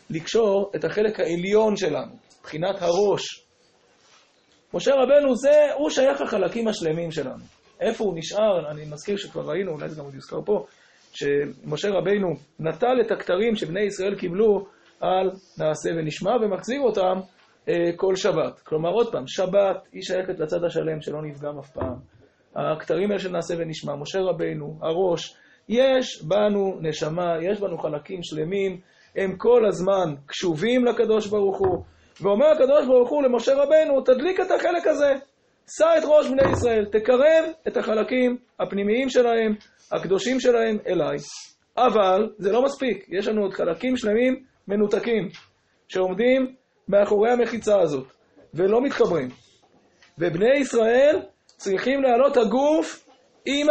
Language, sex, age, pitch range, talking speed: Hebrew, male, 20-39, 180-250 Hz, 130 wpm